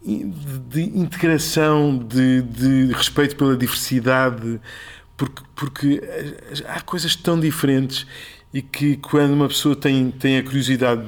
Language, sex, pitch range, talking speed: Portuguese, male, 120-150 Hz, 125 wpm